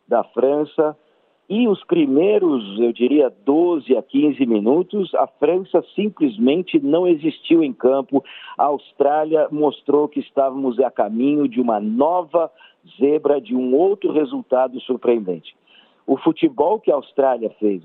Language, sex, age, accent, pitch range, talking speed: Portuguese, male, 50-69, Brazilian, 135-200 Hz, 135 wpm